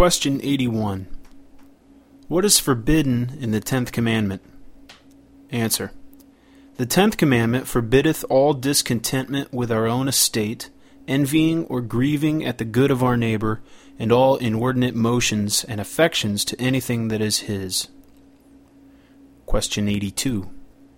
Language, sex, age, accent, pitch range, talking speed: English, male, 30-49, American, 115-155 Hz, 120 wpm